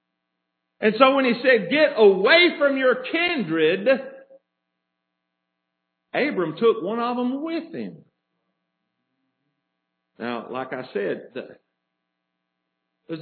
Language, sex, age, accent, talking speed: English, male, 50-69, American, 100 wpm